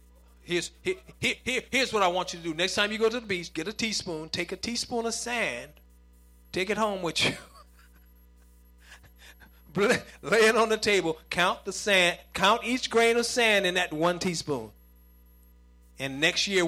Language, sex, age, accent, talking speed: English, male, 40-59, American, 180 wpm